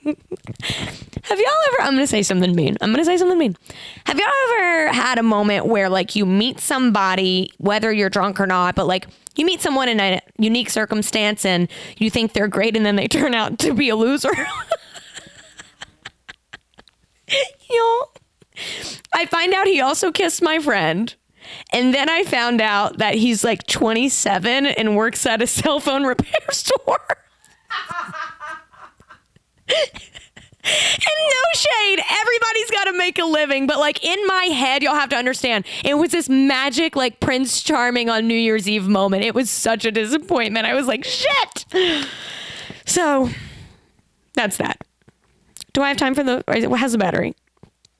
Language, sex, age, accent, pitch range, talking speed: English, female, 20-39, American, 215-315 Hz, 165 wpm